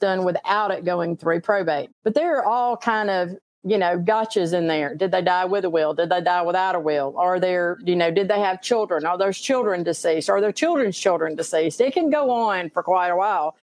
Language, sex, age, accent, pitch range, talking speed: English, female, 40-59, American, 180-215 Hz, 240 wpm